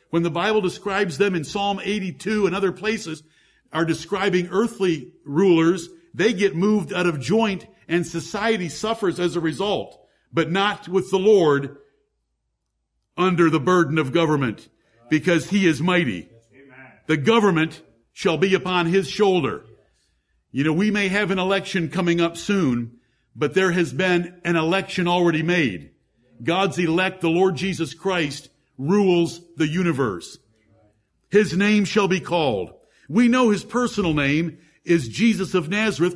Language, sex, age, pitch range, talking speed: English, male, 50-69, 155-195 Hz, 150 wpm